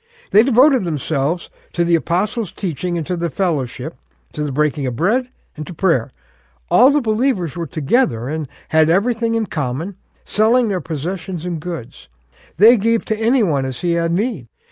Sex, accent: male, American